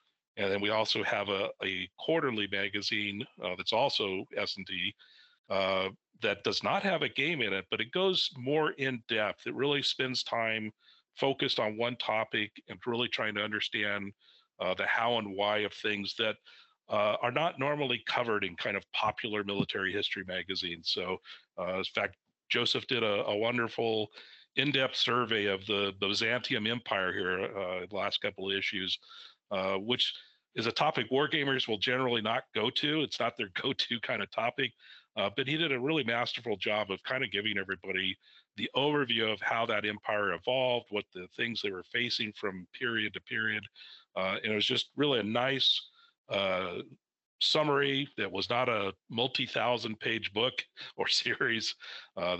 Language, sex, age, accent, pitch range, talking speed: English, male, 50-69, American, 100-125 Hz, 175 wpm